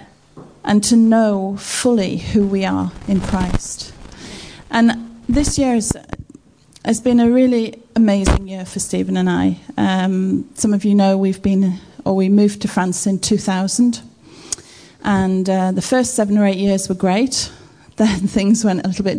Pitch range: 190-220 Hz